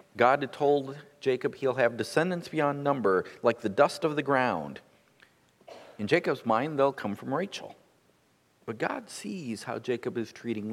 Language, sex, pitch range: English, male, 110-145 Hz